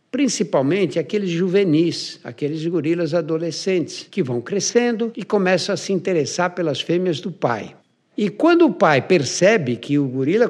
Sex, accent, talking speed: male, Brazilian, 150 wpm